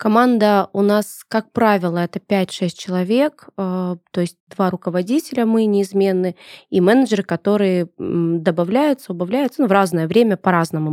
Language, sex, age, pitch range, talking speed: Russian, female, 20-39, 170-205 Hz, 130 wpm